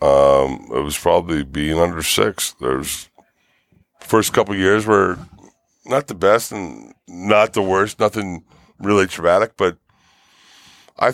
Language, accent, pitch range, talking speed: English, American, 90-115 Hz, 135 wpm